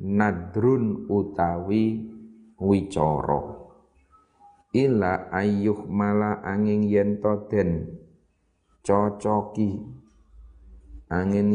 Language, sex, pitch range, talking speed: Indonesian, male, 95-110 Hz, 50 wpm